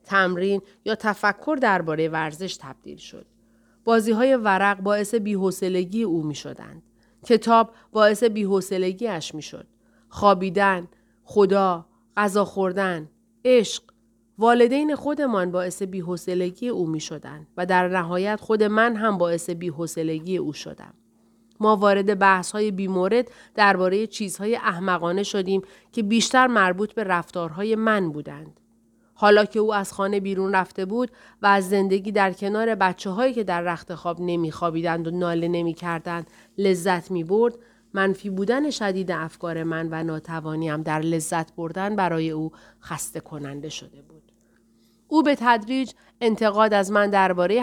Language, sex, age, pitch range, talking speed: Persian, female, 30-49, 165-210 Hz, 130 wpm